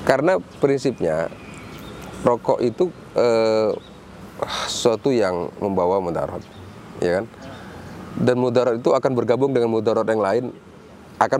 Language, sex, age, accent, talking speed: Indonesian, male, 30-49, native, 110 wpm